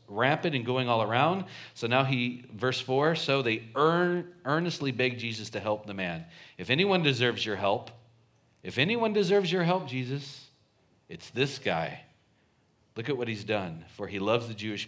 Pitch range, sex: 100-130 Hz, male